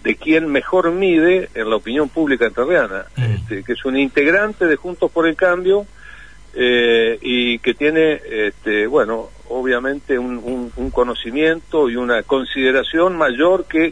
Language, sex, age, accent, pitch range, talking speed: Spanish, male, 50-69, Argentinian, 130-175 Hz, 145 wpm